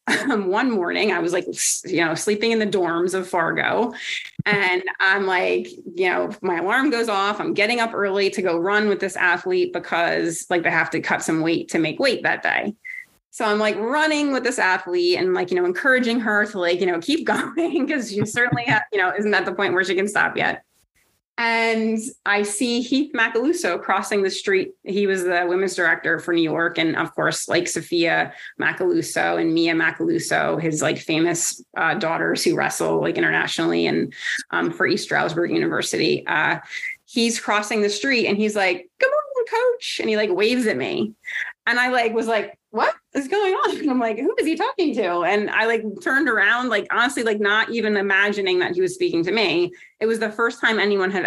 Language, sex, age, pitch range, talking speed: English, female, 30-49, 190-265 Hz, 210 wpm